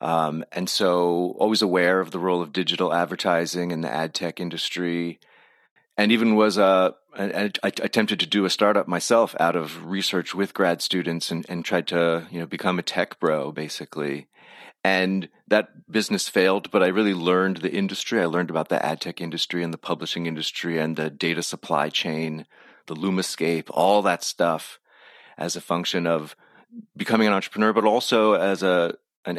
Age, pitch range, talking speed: 30-49, 85-95 Hz, 185 wpm